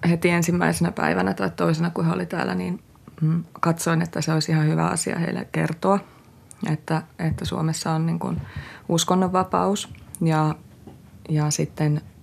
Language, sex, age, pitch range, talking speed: Finnish, female, 30-49, 150-185 Hz, 140 wpm